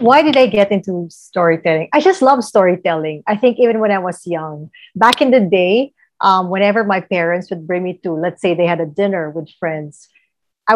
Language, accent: English, Filipino